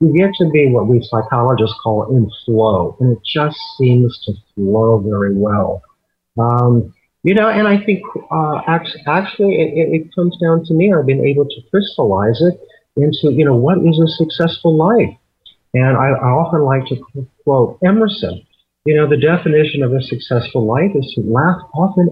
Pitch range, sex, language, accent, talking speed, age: 115-160 Hz, male, English, American, 175 wpm, 50-69